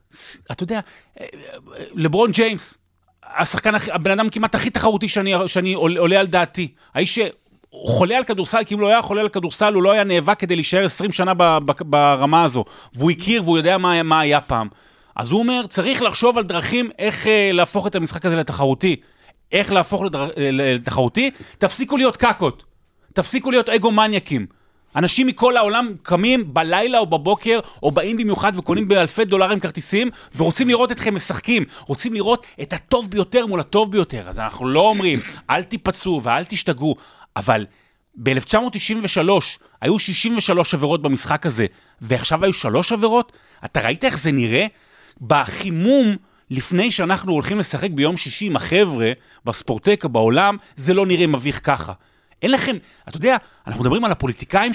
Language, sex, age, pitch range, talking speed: Hebrew, male, 30-49, 155-220 Hz, 155 wpm